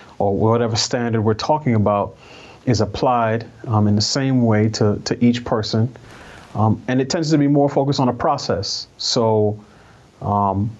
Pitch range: 110-130 Hz